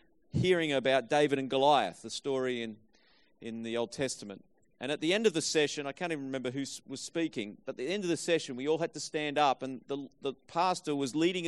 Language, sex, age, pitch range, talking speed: English, male, 40-59, 135-170 Hz, 235 wpm